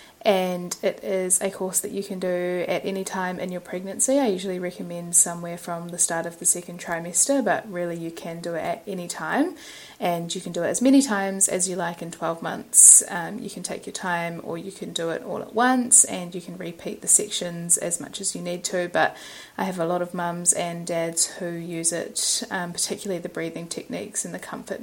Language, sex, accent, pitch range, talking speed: English, female, Australian, 170-195 Hz, 230 wpm